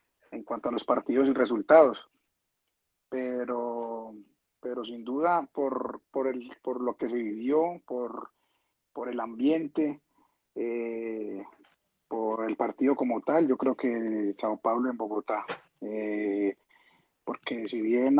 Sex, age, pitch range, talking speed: male, 30-49, 115-135 Hz, 130 wpm